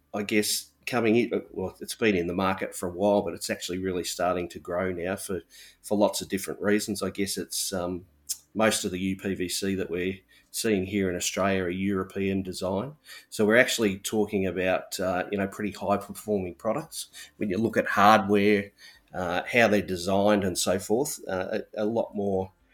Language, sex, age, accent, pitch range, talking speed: English, male, 30-49, Australian, 95-110 Hz, 185 wpm